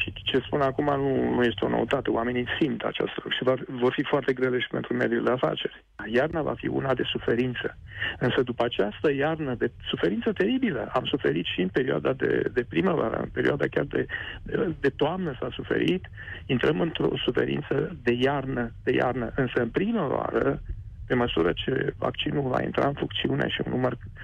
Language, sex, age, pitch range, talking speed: Romanian, male, 40-59, 105-150 Hz, 185 wpm